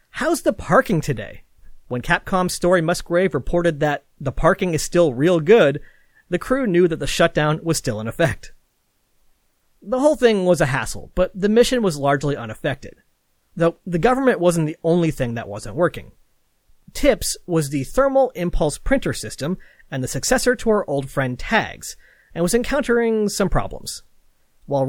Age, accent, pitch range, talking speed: 40-59, American, 140-200 Hz, 165 wpm